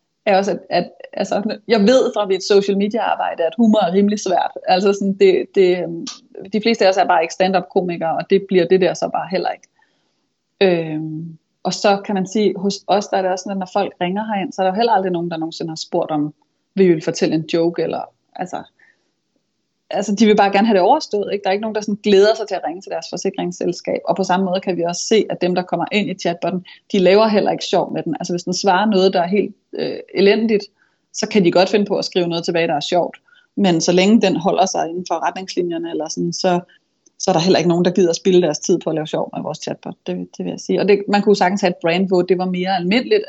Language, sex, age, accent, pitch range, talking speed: Danish, female, 30-49, native, 175-210 Hz, 265 wpm